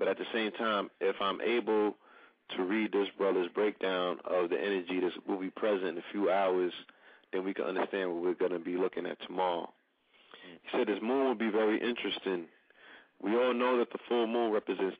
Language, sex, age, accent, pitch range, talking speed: English, male, 40-59, American, 100-120 Hz, 210 wpm